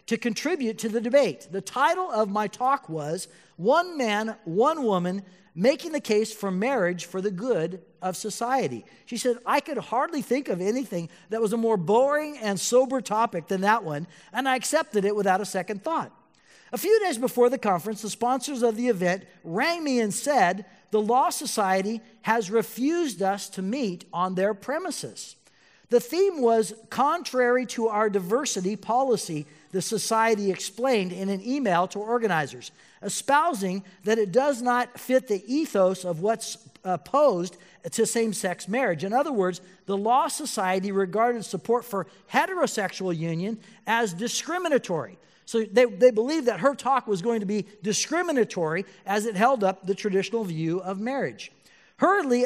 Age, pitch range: 50-69, 190-250 Hz